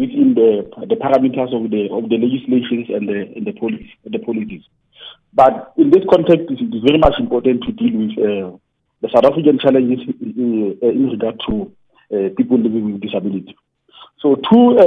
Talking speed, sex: 190 wpm, male